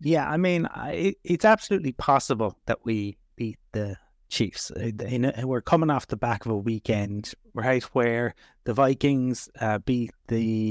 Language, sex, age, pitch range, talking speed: English, male, 30-49, 115-140 Hz, 140 wpm